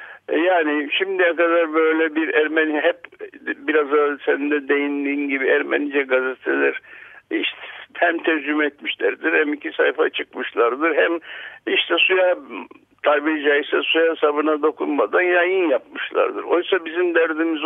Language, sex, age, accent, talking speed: Turkish, male, 60-79, native, 115 wpm